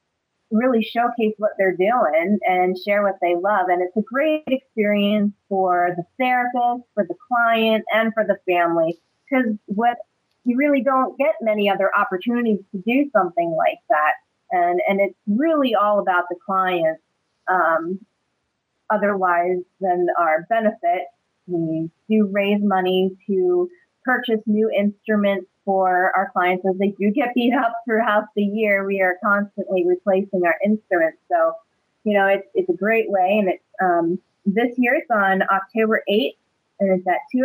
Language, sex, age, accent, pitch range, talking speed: English, female, 30-49, American, 190-230 Hz, 160 wpm